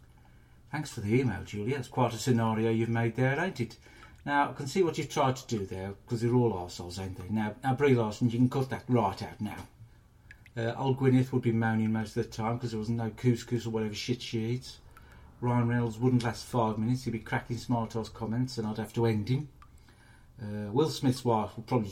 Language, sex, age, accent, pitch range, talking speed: English, male, 50-69, British, 110-130 Hz, 230 wpm